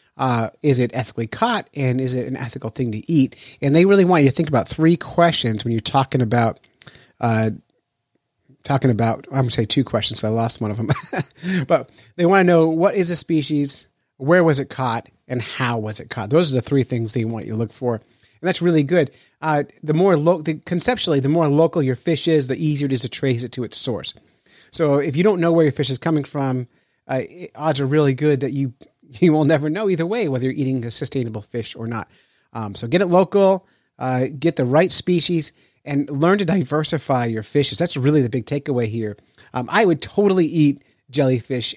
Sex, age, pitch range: male, 30-49, 115-160 Hz